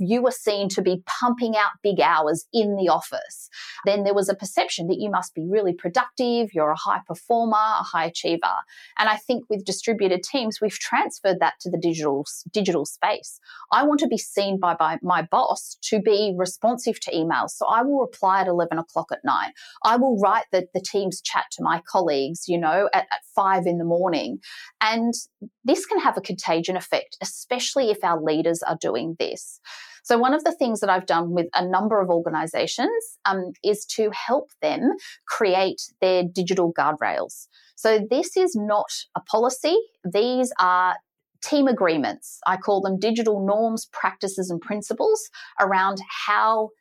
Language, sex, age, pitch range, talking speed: English, female, 30-49, 185-235 Hz, 180 wpm